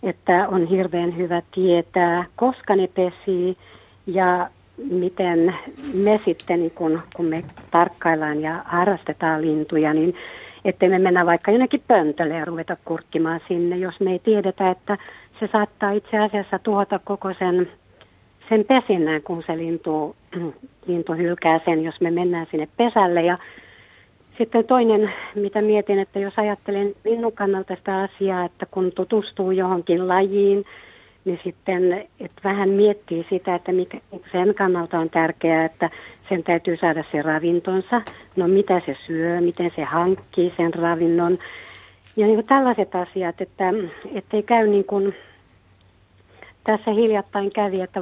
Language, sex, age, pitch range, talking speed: Finnish, female, 50-69, 170-200 Hz, 140 wpm